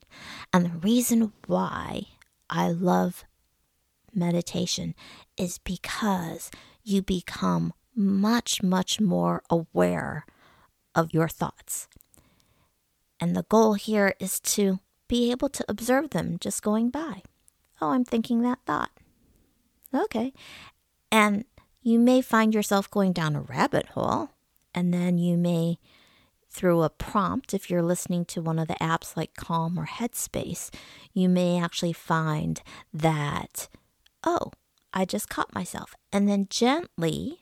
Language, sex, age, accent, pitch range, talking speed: English, female, 50-69, American, 165-215 Hz, 130 wpm